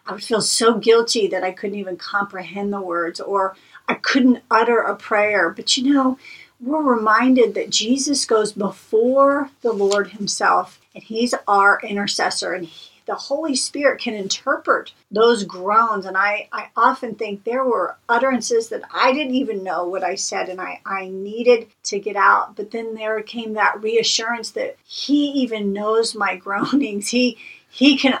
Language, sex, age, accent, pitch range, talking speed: English, female, 50-69, American, 200-255 Hz, 170 wpm